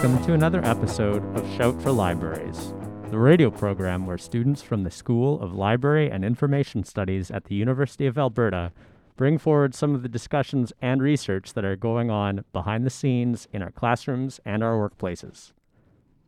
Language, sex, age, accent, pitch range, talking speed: English, male, 40-59, American, 100-130 Hz, 175 wpm